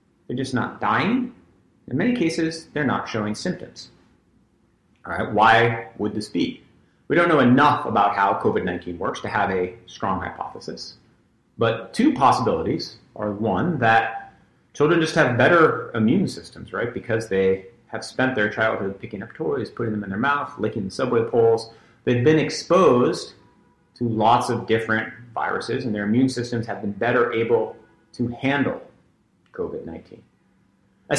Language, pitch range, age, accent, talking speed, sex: English, 105-130 Hz, 30-49, American, 155 wpm, male